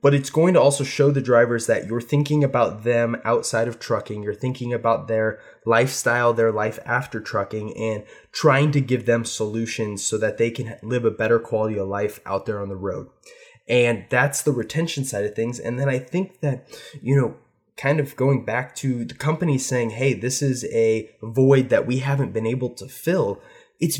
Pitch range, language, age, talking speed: 115-140 Hz, English, 20-39, 205 wpm